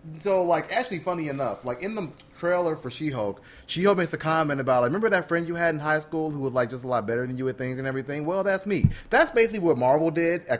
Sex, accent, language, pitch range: male, American, English, 115-150 Hz